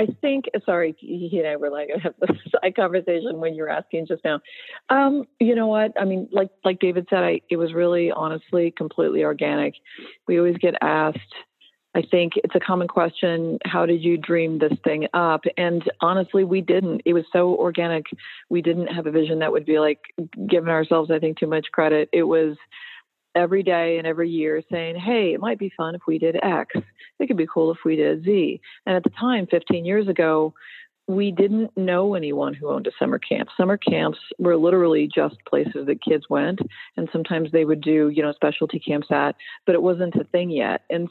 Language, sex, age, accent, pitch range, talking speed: English, female, 40-59, American, 160-185 Hz, 210 wpm